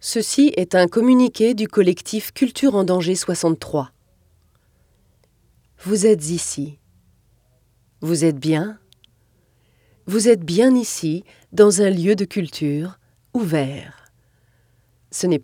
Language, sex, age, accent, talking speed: French, female, 30-49, French, 110 wpm